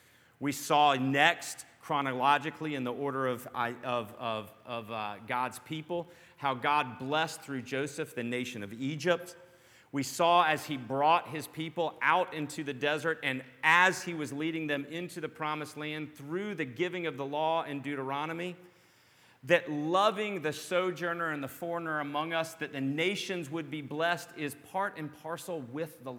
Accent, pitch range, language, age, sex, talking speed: American, 130-170 Hz, English, 40-59, male, 165 wpm